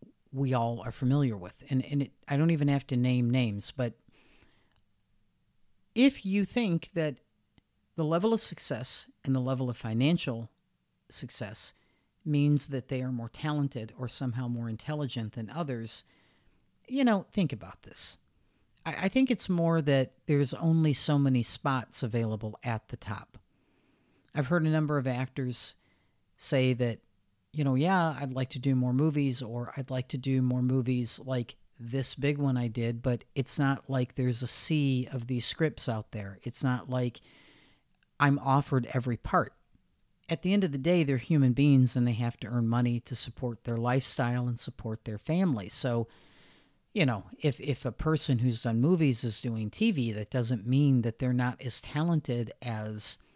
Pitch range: 115-145 Hz